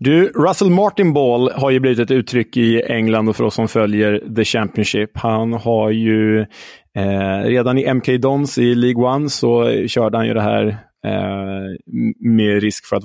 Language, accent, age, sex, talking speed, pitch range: Swedish, Norwegian, 20-39, male, 185 wpm, 105-135 Hz